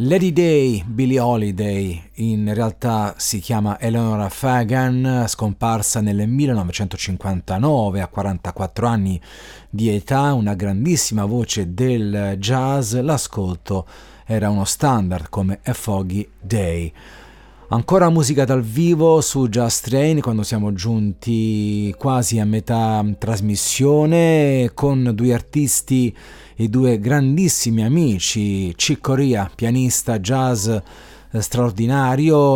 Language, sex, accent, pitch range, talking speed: Italian, male, native, 105-125 Hz, 105 wpm